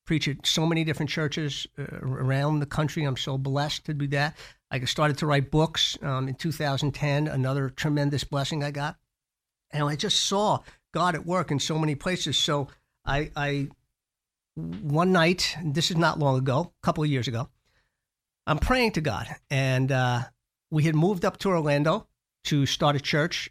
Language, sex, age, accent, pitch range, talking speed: English, male, 50-69, American, 130-155 Hz, 180 wpm